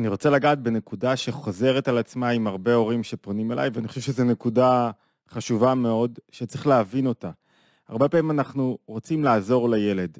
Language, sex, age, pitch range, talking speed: Hebrew, male, 20-39, 115-140 Hz, 160 wpm